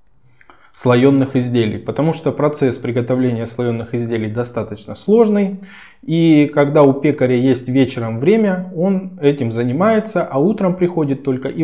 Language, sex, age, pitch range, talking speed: Russian, male, 20-39, 120-160 Hz, 130 wpm